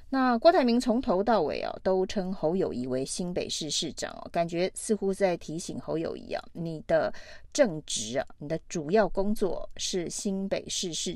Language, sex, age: Chinese, female, 30-49